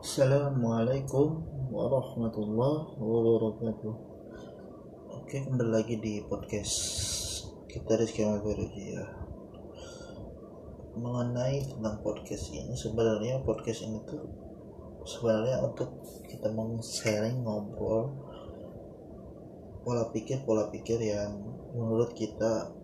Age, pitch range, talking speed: 20-39, 105-115 Hz, 85 wpm